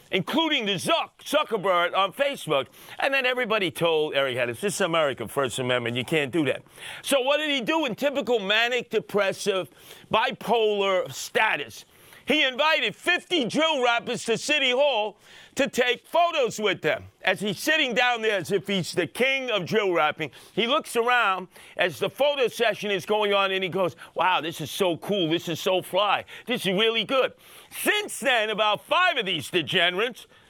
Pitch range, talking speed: 170-250 Hz, 175 wpm